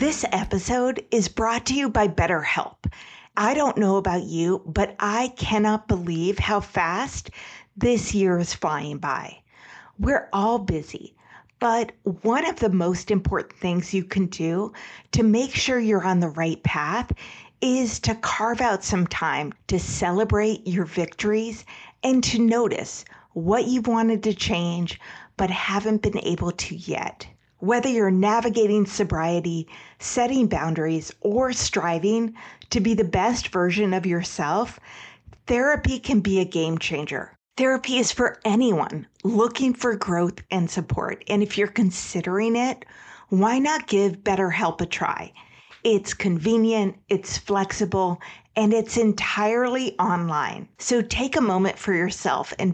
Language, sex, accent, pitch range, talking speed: English, female, American, 180-230 Hz, 140 wpm